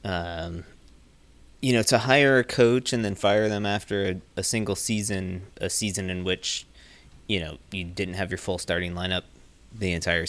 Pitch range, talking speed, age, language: 85-105 Hz, 180 wpm, 20-39, English